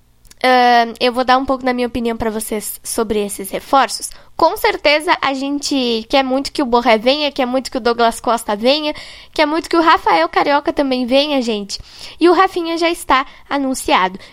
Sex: female